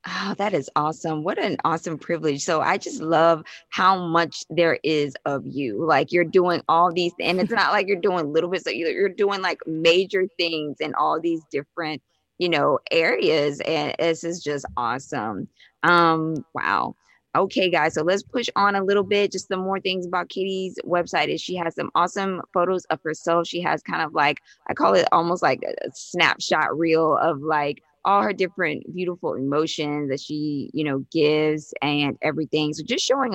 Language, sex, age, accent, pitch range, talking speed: English, female, 20-39, American, 150-180 Hz, 190 wpm